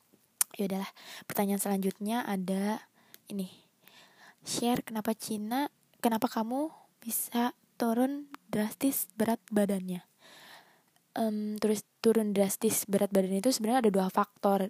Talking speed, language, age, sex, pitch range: 110 wpm, Indonesian, 20-39, female, 195-225 Hz